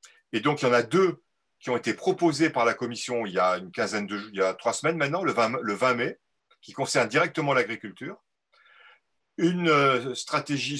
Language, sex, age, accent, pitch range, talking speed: French, male, 40-59, French, 120-165 Hz, 200 wpm